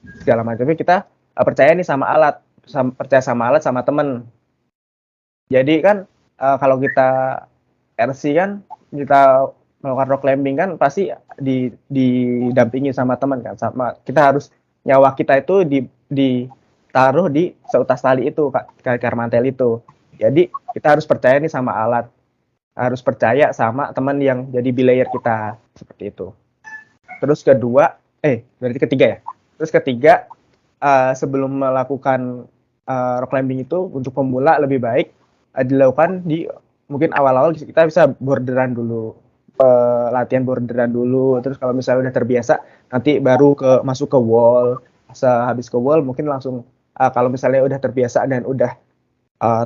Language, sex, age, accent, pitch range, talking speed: Indonesian, male, 20-39, native, 125-140 Hz, 140 wpm